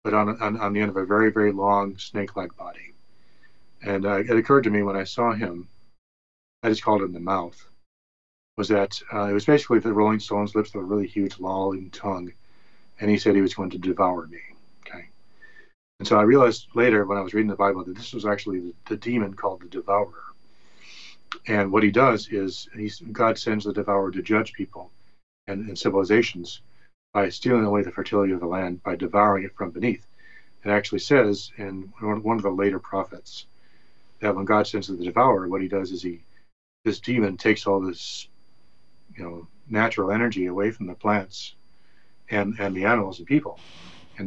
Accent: American